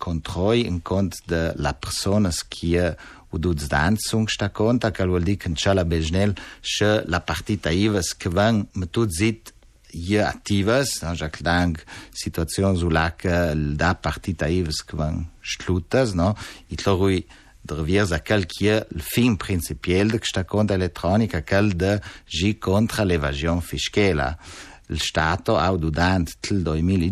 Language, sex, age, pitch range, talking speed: Italian, male, 60-79, 85-105 Hz, 160 wpm